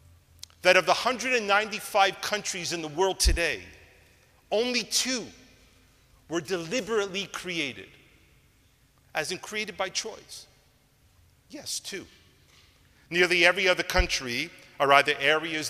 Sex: male